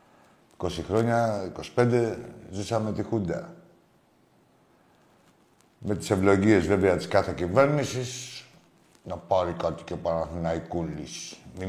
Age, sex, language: 50-69, male, Greek